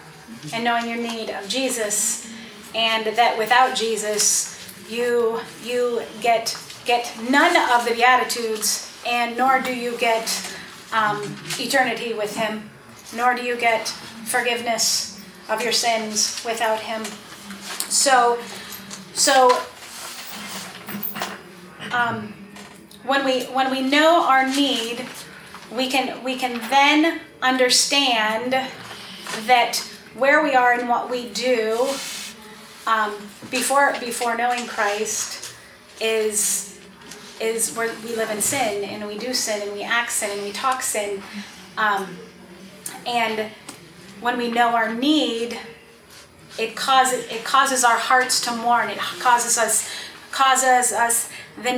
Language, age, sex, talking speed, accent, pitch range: English, 30-49, female, 125 wpm, American, 210-250 Hz